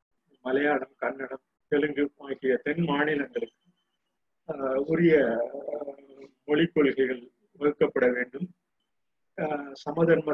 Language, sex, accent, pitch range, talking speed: Tamil, male, native, 135-155 Hz, 70 wpm